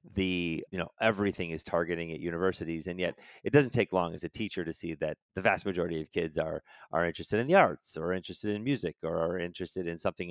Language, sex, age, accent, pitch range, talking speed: English, male, 30-49, American, 85-115 Hz, 240 wpm